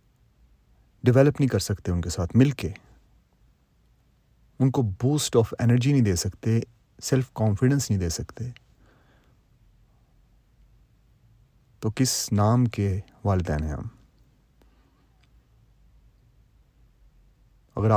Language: Urdu